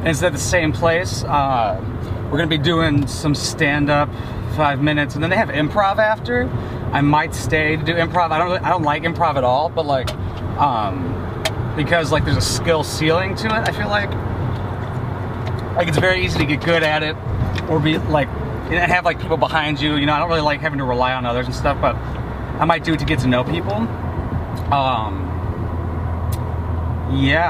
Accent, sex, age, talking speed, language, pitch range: American, male, 30-49, 205 wpm, English, 105-145 Hz